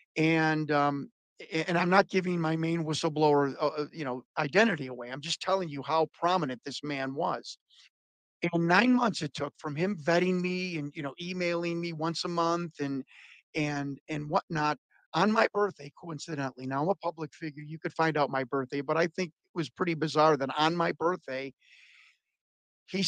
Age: 50-69